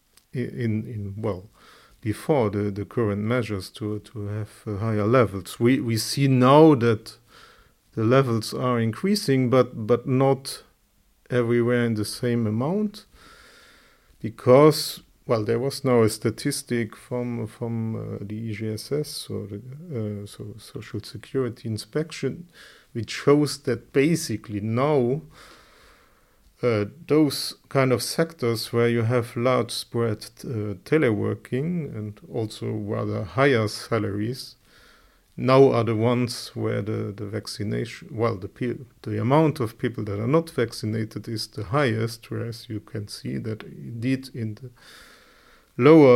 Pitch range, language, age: 110-130 Hz, English, 40-59